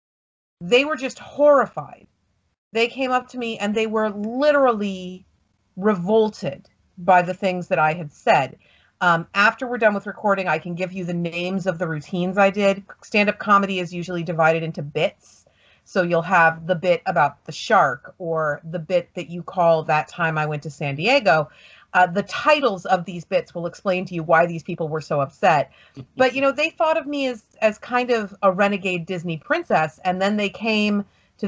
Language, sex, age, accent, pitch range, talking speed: English, female, 40-59, American, 175-270 Hz, 195 wpm